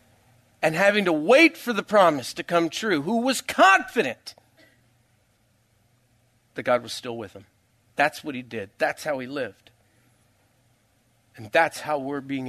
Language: English